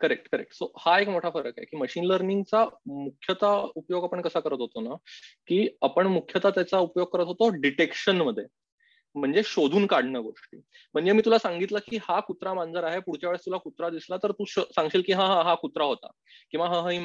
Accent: native